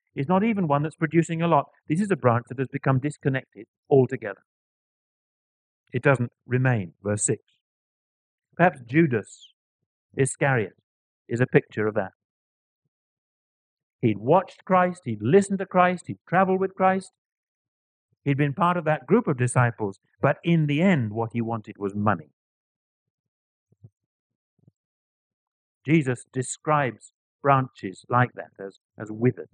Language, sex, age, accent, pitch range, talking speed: English, male, 50-69, British, 115-155 Hz, 135 wpm